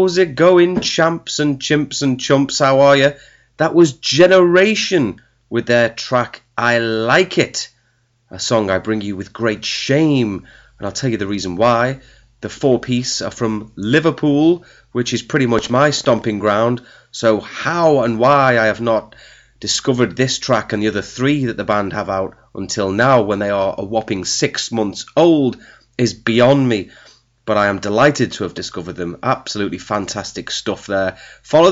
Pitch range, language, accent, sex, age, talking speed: 105-140 Hz, English, British, male, 30-49, 175 wpm